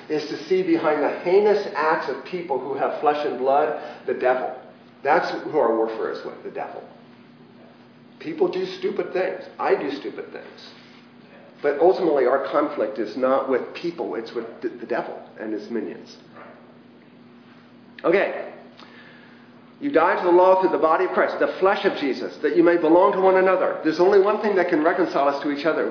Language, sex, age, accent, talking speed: English, male, 40-59, American, 185 wpm